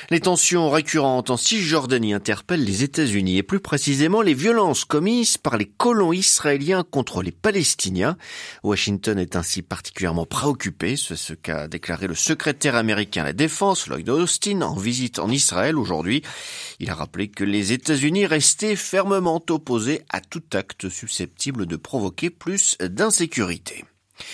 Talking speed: 150 wpm